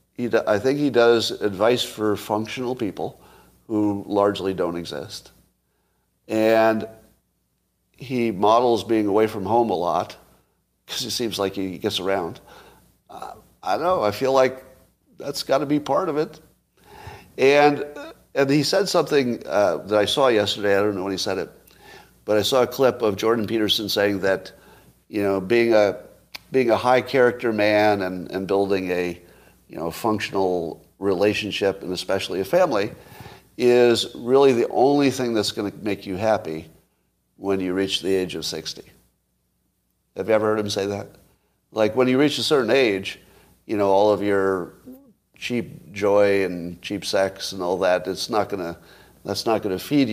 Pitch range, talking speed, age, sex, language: 95-120 Hz, 170 wpm, 50-69, male, English